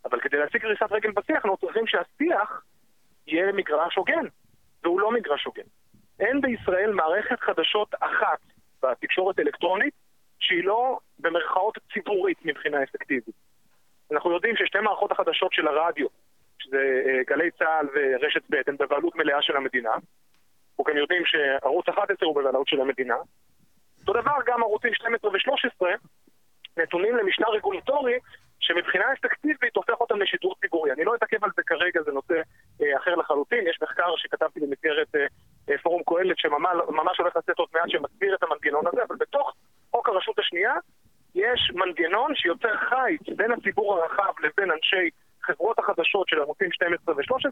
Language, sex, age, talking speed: Hebrew, male, 30-49, 145 wpm